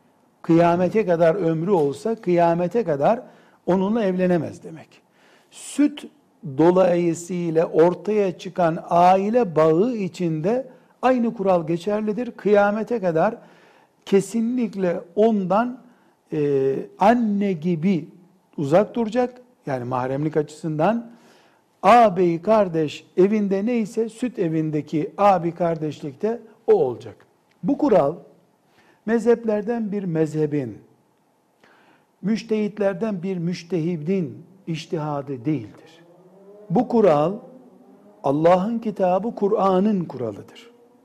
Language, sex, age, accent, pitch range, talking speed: Turkish, male, 60-79, native, 170-215 Hz, 80 wpm